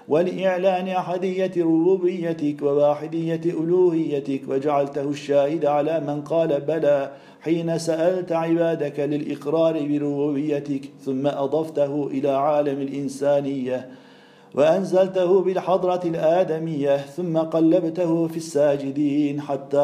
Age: 50-69